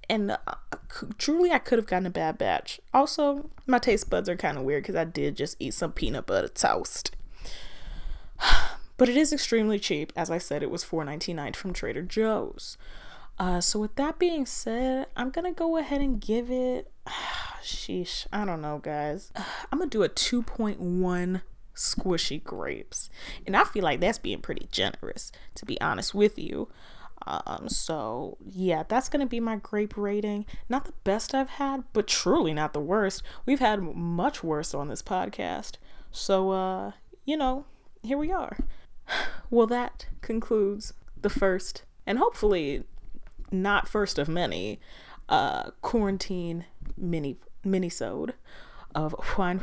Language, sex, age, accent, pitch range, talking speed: English, female, 20-39, American, 180-255 Hz, 160 wpm